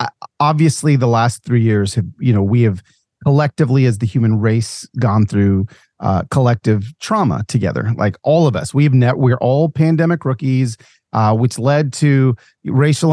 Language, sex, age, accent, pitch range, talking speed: English, male, 30-49, American, 120-160 Hz, 175 wpm